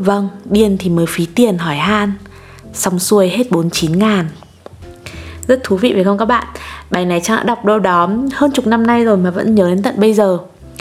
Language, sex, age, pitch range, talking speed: Vietnamese, female, 20-39, 175-220 Hz, 220 wpm